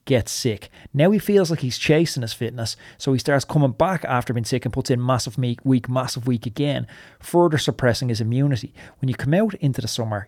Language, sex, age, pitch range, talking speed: English, male, 30-49, 110-140 Hz, 215 wpm